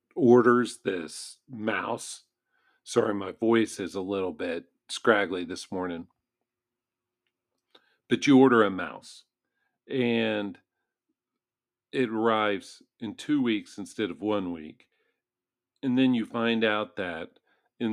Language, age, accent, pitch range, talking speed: English, 50-69, American, 95-120 Hz, 115 wpm